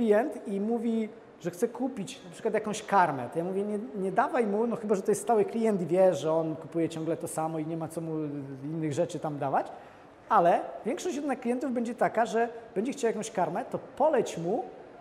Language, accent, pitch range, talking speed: Polish, native, 185-245 Hz, 215 wpm